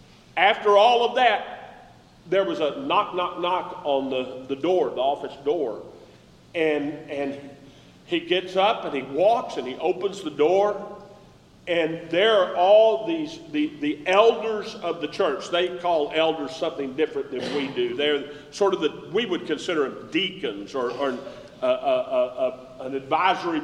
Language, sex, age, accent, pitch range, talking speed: English, male, 40-59, American, 170-220 Hz, 165 wpm